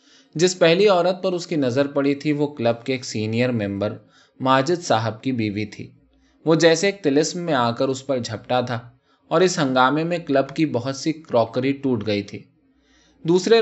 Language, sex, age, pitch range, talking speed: Urdu, male, 20-39, 115-160 Hz, 195 wpm